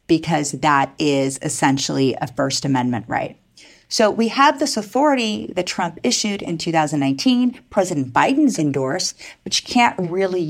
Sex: female